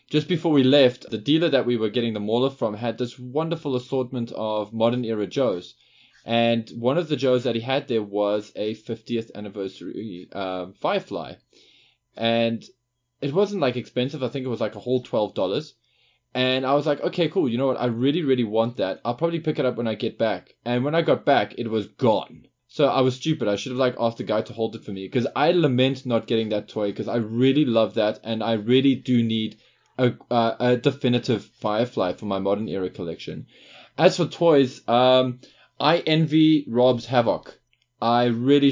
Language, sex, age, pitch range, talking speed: English, male, 20-39, 110-135 Hz, 205 wpm